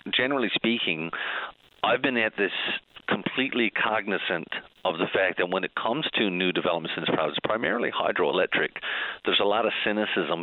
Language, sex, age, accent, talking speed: English, male, 40-59, American, 160 wpm